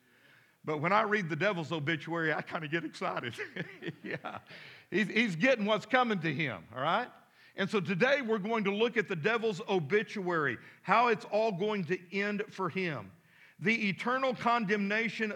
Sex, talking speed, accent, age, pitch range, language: male, 170 wpm, American, 50-69, 185-225 Hz, English